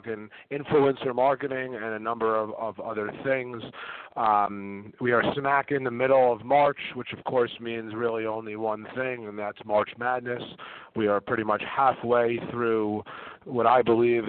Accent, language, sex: American, English, male